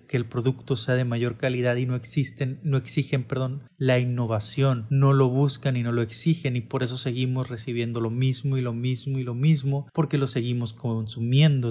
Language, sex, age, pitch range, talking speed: Spanish, male, 20-39, 120-140 Hz, 200 wpm